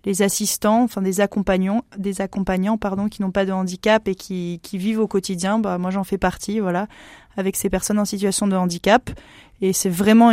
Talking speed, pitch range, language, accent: 205 wpm, 190-210 Hz, French, French